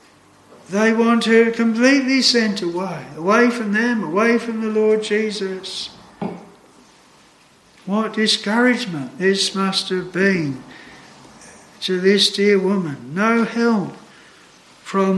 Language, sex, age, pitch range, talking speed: English, male, 60-79, 155-205 Hz, 105 wpm